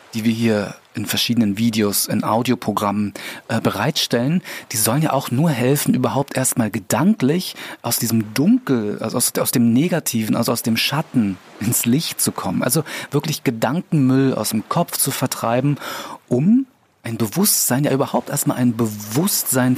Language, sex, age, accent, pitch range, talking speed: German, male, 40-59, German, 115-150 Hz, 150 wpm